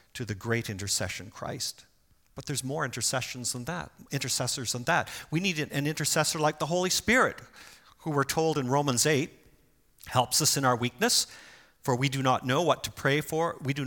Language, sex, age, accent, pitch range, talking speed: English, male, 50-69, American, 115-150 Hz, 190 wpm